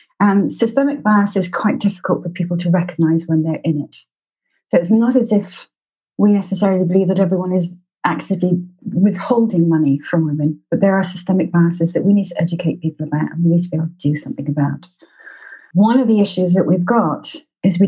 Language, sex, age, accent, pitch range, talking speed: English, female, 30-49, British, 165-195 Hz, 205 wpm